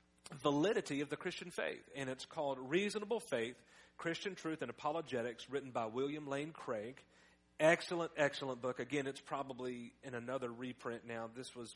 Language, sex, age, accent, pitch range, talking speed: English, male, 40-59, American, 120-145 Hz, 160 wpm